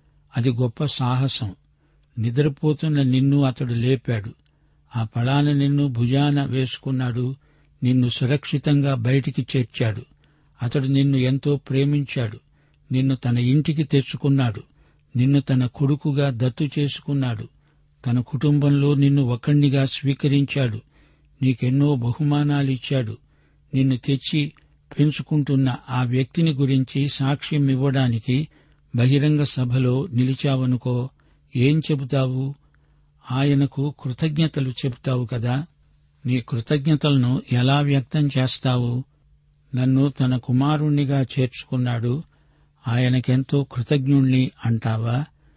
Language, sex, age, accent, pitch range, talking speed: Telugu, male, 60-79, native, 125-145 Hz, 85 wpm